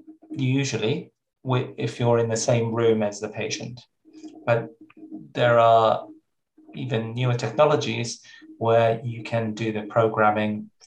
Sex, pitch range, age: male, 110-155 Hz, 20-39